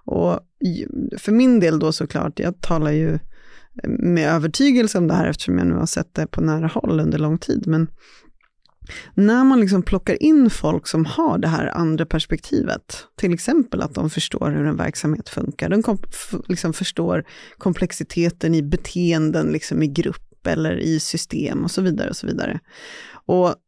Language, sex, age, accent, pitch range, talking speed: Swedish, female, 30-49, native, 160-220 Hz, 160 wpm